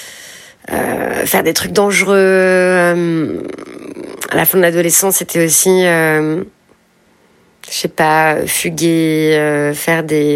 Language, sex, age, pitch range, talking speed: French, female, 30-49, 160-190 Hz, 120 wpm